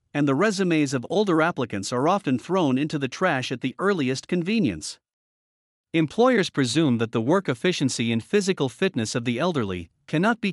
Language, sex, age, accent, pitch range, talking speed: German, male, 50-69, American, 125-175 Hz, 170 wpm